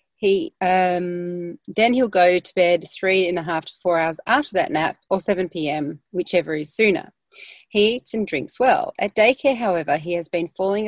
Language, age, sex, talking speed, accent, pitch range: English, 40-59, female, 190 wpm, Australian, 170-205 Hz